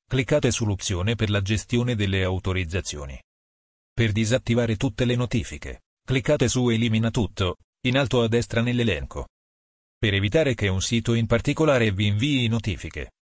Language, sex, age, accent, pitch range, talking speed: Italian, male, 40-59, native, 95-120 Hz, 140 wpm